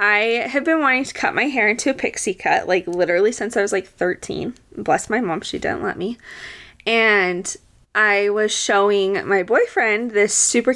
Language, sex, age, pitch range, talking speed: English, female, 20-39, 200-320 Hz, 190 wpm